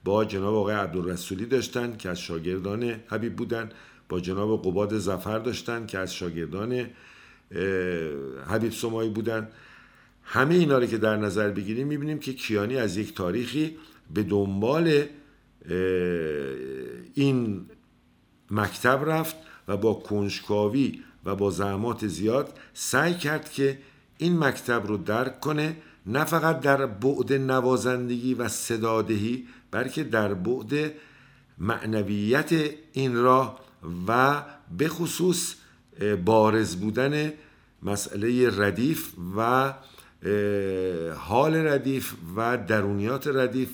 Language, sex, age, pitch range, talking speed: Persian, male, 50-69, 105-135 Hz, 105 wpm